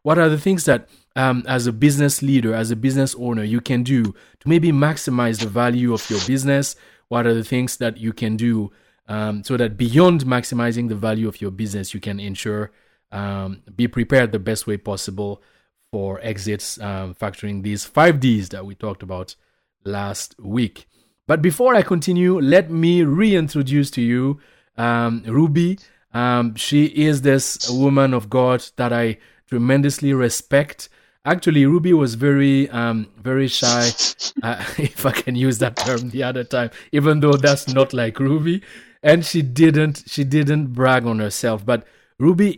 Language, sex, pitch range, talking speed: English, male, 115-145 Hz, 170 wpm